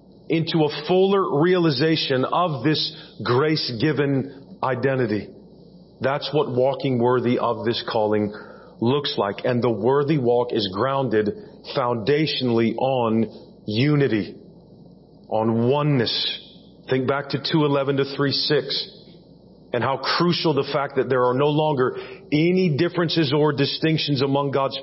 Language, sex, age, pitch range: English, male, 40-59, 130-155 Hz